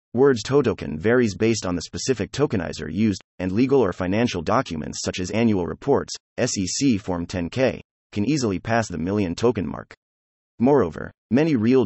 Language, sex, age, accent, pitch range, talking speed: English, male, 30-49, American, 90-120 Hz, 155 wpm